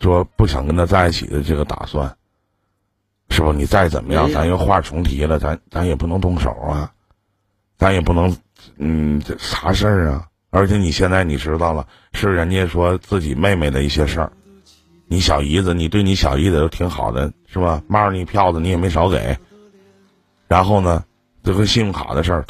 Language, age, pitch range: Chinese, 50-69, 85-120 Hz